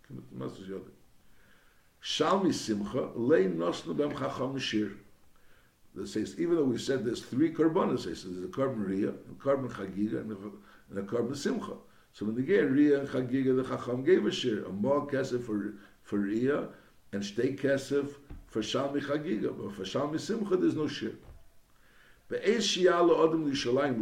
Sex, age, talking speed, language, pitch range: male, 60-79, 135 wpm, English, 110-150 Hz